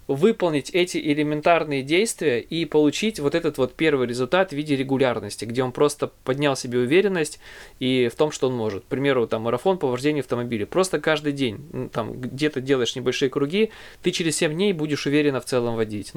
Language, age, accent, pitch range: Russian, 20-39, native, 125-155 Hz